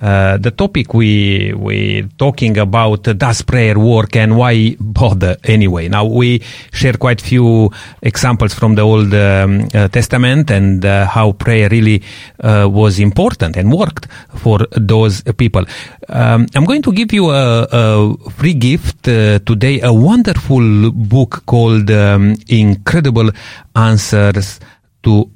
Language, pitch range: English, 105-135 Hz